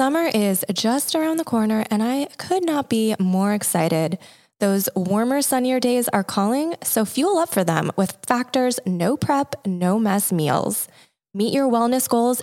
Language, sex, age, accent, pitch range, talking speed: English, female, 20-39, American, 185-245 Hz, 170 wpm